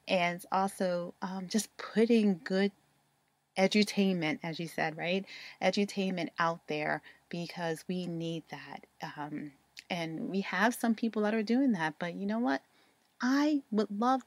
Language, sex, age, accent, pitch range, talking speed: English, female, 30-49, American, 160-195 Hz, 145 wpm